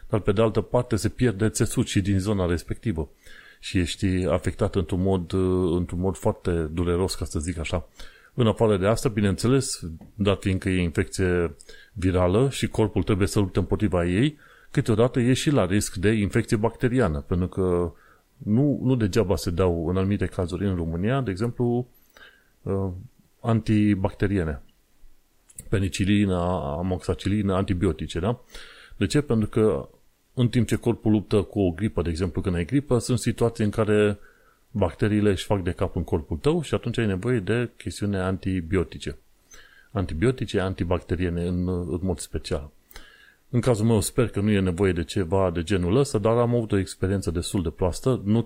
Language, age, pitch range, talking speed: Romanian, 30-49, 90-115 Hz, 165 wpm